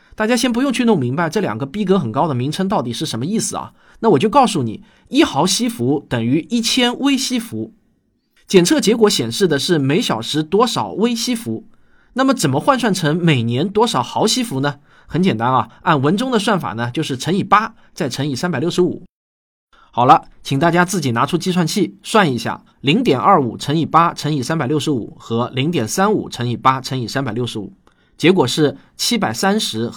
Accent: native